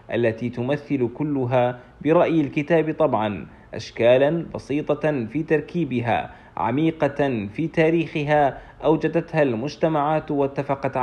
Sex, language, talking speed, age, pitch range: male, Arabic, 85 wpm, 40-59, 125-150 Hz